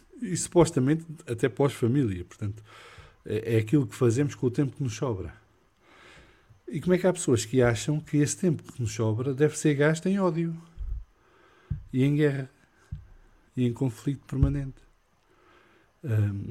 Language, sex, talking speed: English, male, 155 wpm